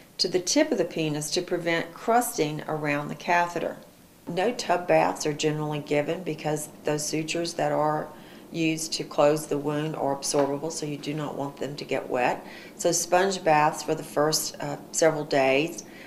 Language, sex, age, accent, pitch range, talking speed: English, female, 40-59, American, 150-190 Hz, 180 wpm